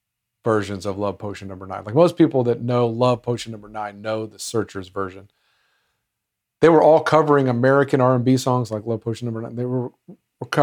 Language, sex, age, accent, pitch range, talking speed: English, male, 50-69, American, 110-145 Hz, 205 wpm